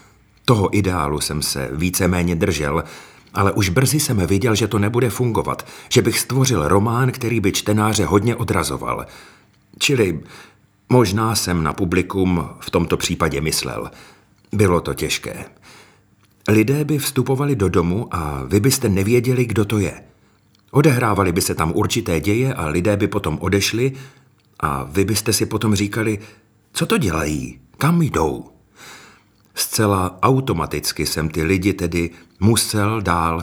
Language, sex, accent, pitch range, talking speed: Czech, male, native, 90-115 Hz, 140 wpm